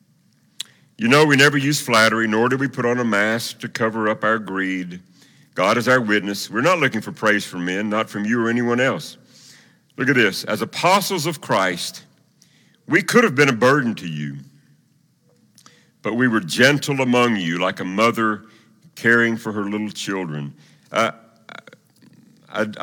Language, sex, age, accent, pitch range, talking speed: English, male, 60-79, American, 105-130 Hz, 170 wpm